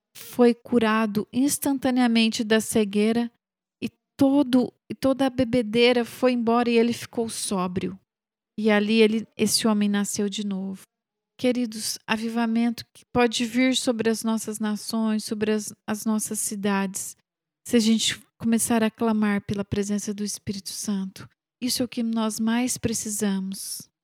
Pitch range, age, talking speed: 215-245 Hz, 40-59, 140 wpm